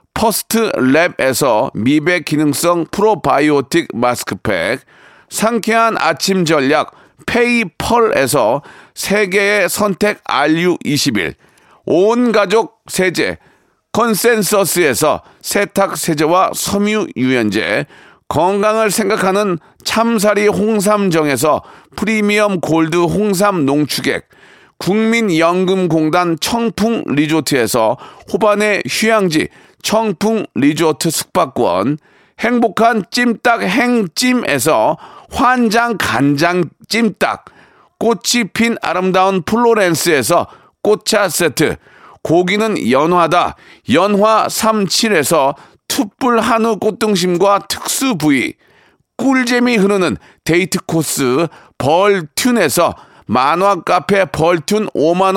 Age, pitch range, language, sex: 40-59, 170-225 Hz, Korean, male